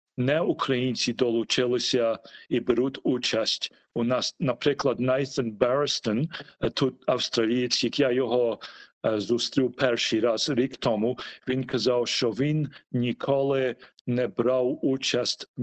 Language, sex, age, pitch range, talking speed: Ukrainian, male, 40-59, 120-130 Hz, 110 wpm